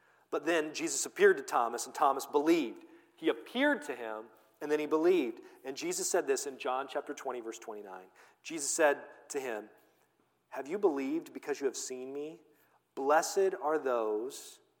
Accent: American